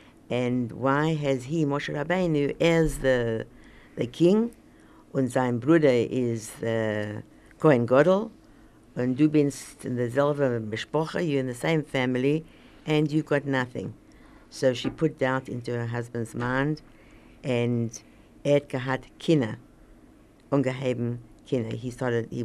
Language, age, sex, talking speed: English, 60-79, female, 120 wpm